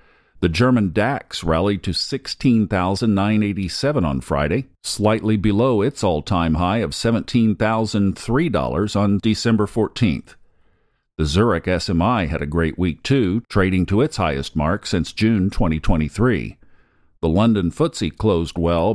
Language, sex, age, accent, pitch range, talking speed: English, male, 50-69, American, 85-110 Hz, 125 wpm